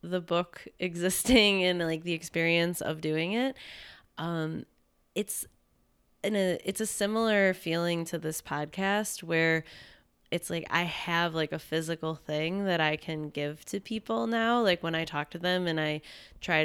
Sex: female